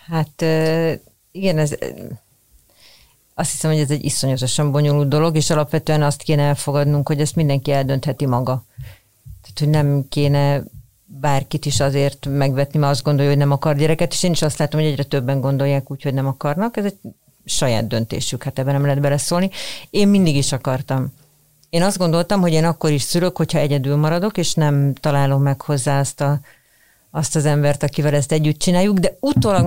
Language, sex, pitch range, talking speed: Hungarian, female, 140-165 Hz, 180 wpm